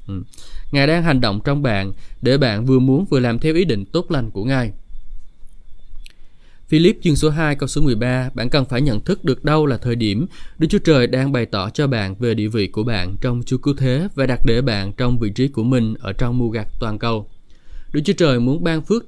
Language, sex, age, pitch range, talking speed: Vietnamese, male, 20-39, 110-145 Hz, 235 wpm